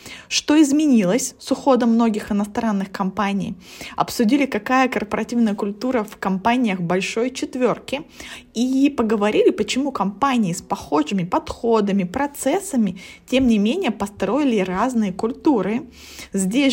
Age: 20-39